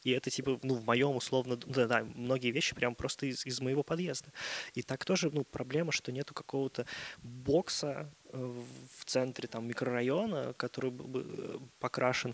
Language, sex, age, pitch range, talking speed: Russian, male, 20-39, 120-135 Hz, 170 wpm